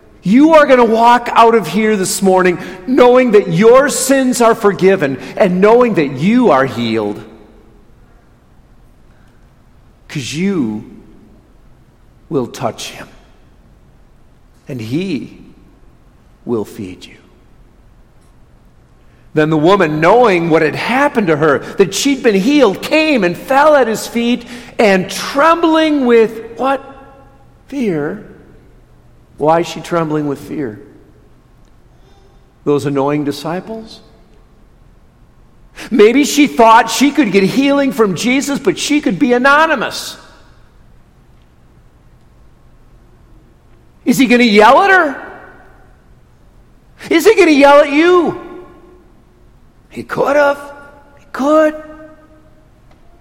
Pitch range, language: 170-280 Hz, English